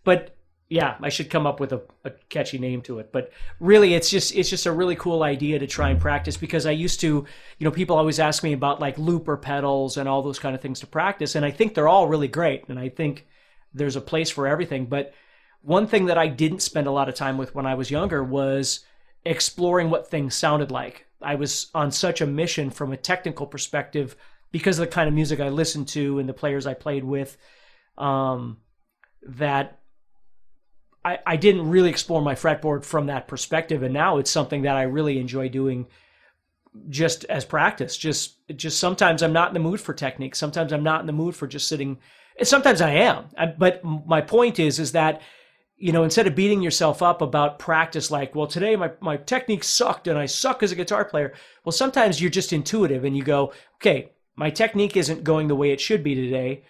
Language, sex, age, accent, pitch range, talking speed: English, male, 30-49, American, 140-170 Hz, 215 wpm